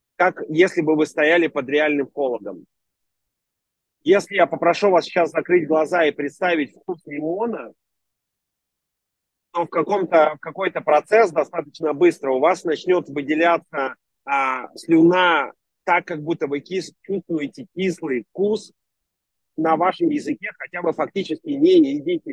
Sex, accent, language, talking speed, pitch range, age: male, native, Russian, 130 wpm, 155-190 Hz, 30-49